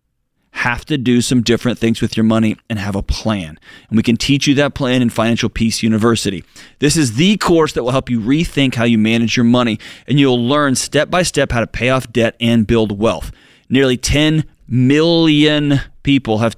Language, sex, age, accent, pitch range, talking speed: English, male, 30-49, American, 115-140 Hz, 205 wpm